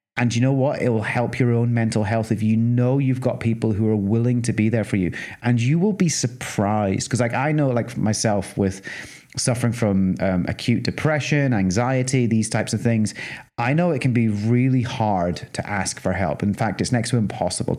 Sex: male